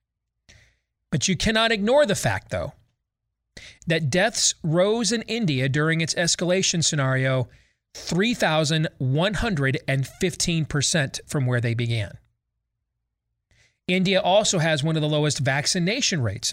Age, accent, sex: 40-59, American, male